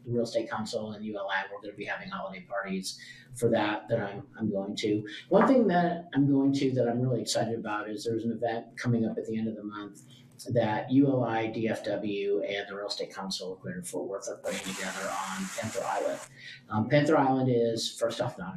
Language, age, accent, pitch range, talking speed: English, 40-59, American, 110-130 Hz, 220 wpm